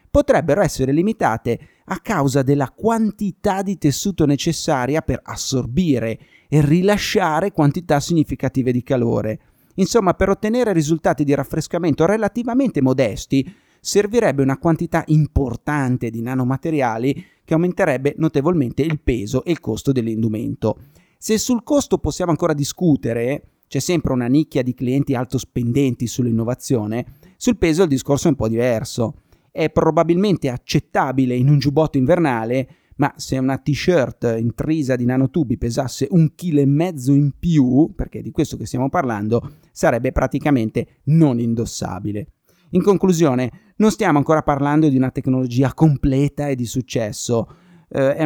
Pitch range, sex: 130-165 Hz, male